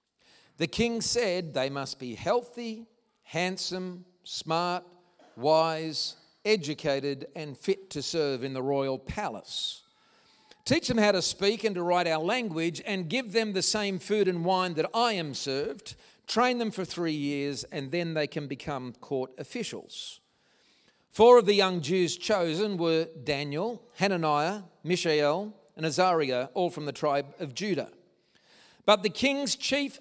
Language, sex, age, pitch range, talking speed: English, male, 50-69, 150-200 Hz, 150 wpm